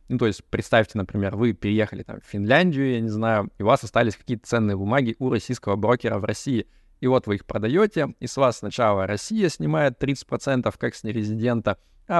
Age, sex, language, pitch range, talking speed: 20-39, male, Russian, 105-130 Hz, 195 wpm